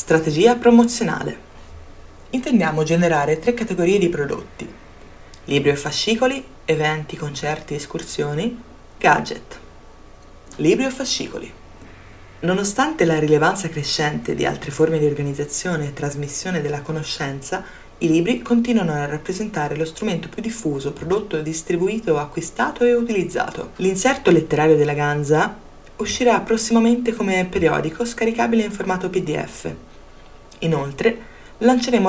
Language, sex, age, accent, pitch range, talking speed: Italian, female, 20-39, native, 145-195 Hz, 110 wpm